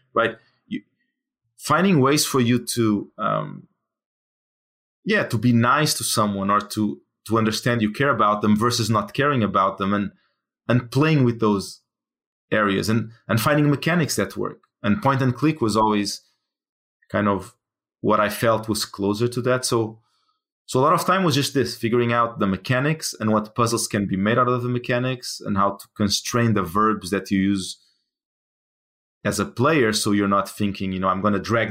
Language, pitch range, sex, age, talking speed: English, 105-125 Hz, male, 30-49, 185 wpm